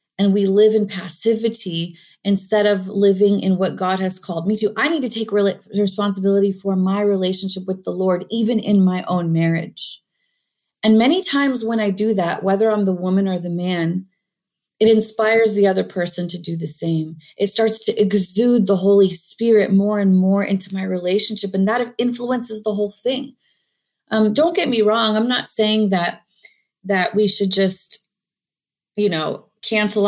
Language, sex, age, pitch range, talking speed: English, female, 30-49, 185-215 Hz, 180 wpm